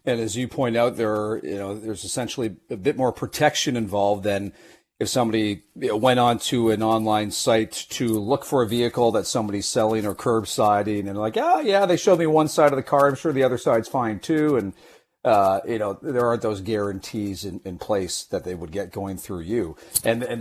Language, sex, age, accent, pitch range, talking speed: English, male, 40-59, American, 105-130 Hz, 220 wpm